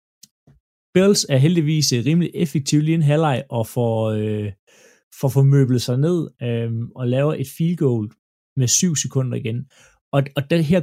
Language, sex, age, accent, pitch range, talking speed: Danish, male, 30-49, native, 125-160 Hz, 165 wpm